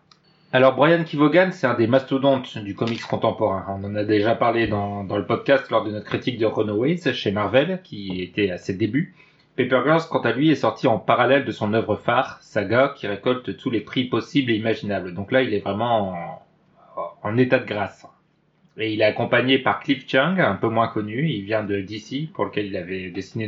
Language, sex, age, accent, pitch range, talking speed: French, male, 30-49, French, 105-135 Hz, 215 wpm